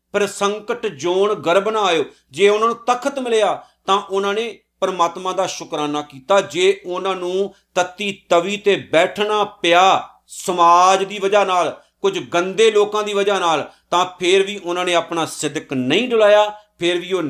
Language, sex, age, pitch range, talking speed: Punjabi, male, 50-69, 165-210 Hz, 165 wpm